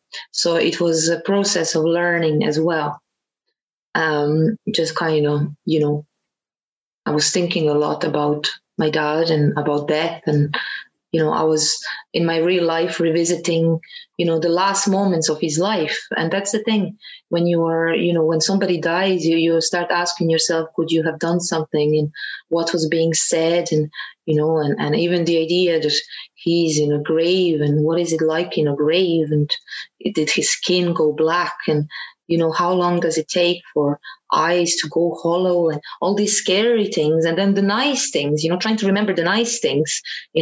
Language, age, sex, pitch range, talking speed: English, 20-39, female, 155-175 Hz, 195 wpm